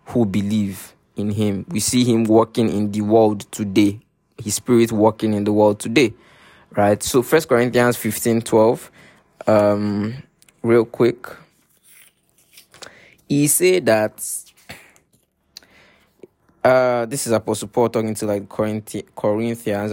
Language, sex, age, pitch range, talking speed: English, male, 20-39, 105-120 Hz, 125 wpm